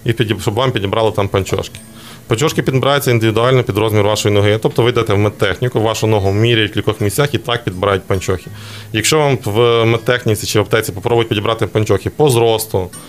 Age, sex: 20-39, male